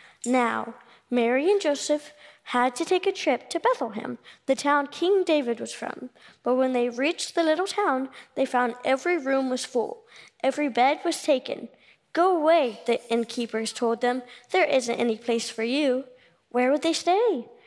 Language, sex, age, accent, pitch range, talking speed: English, female, 20-39, American, 235-295 Hz, 170 wpm